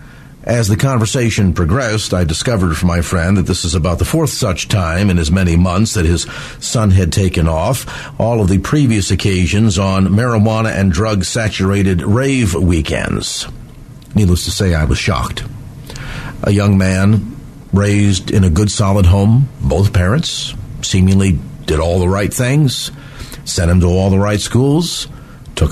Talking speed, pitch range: 160 wpm, 95-130 Hz